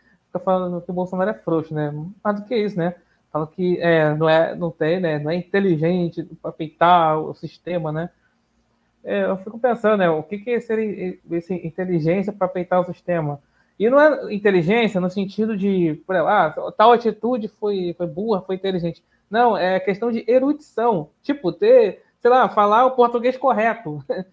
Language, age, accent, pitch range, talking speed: Portuguese, 20-39, Brazilian, 175-245 Hz, 185 wpm